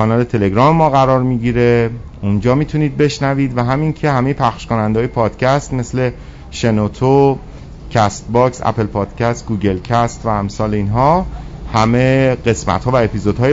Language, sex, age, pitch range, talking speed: Persian, male, 50-69, 115-145 Hz, 135 wpm